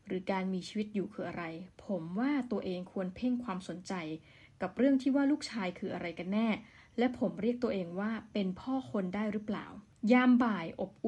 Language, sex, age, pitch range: Thai, female, 20-39, 185-240 Hz